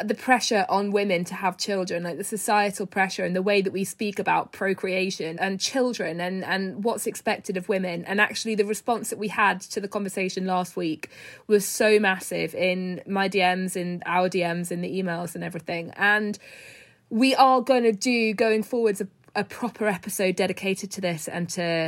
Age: 20-39